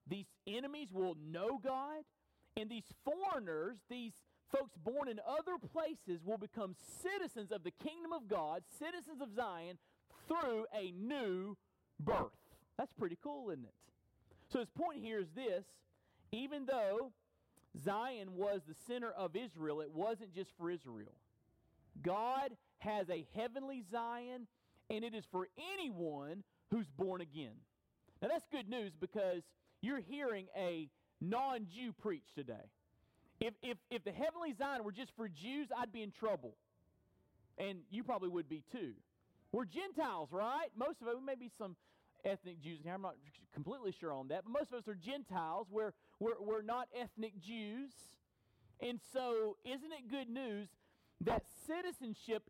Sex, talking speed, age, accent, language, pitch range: male, 155 wpm, 40-59, American, English, 190-275 Hz